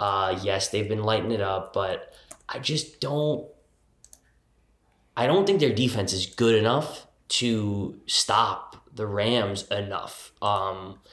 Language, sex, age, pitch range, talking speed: English, male, 20-39, 100-120 Hz, 135 wpm